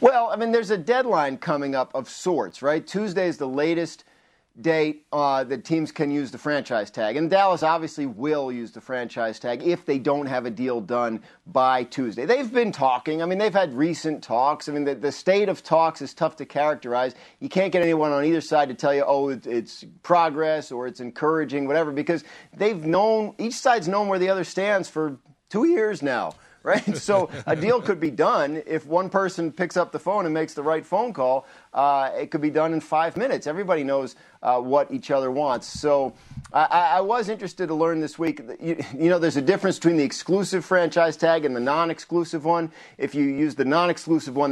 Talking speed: 215 wpm